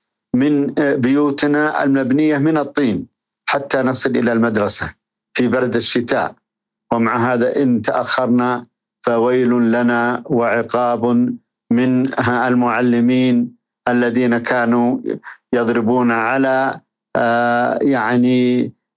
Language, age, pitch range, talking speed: Arabic, 50-69, 115-130 Hz, 80 wpm